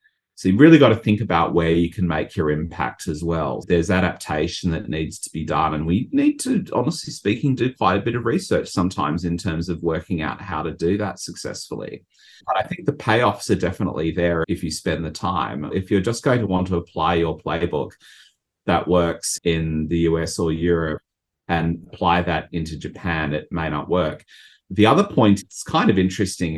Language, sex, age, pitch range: English, male, 30-49, 85-100 Hz